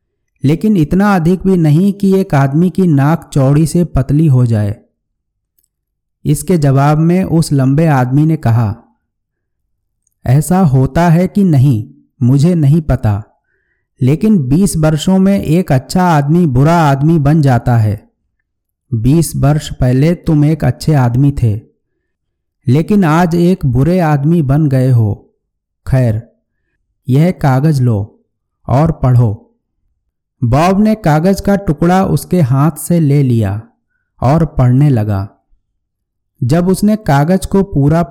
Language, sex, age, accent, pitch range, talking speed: Hindi, male, 50-69, native, 120-165 Hz, 130 wpm